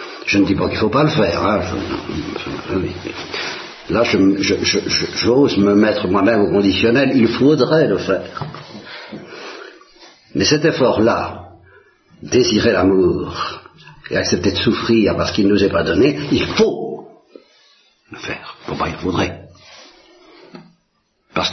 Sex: male